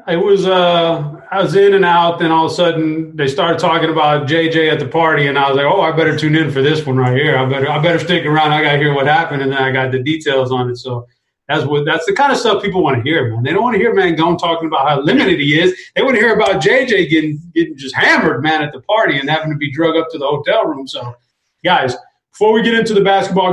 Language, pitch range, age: English, 135-175 Hz, 30-49